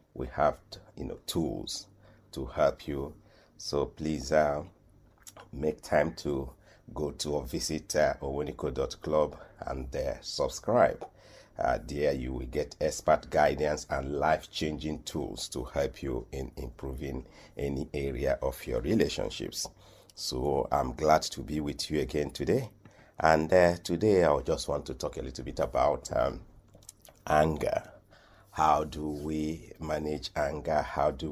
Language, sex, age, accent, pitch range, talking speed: English, male, 50-69, Nigerian, 70-80 Hz, 140 wpm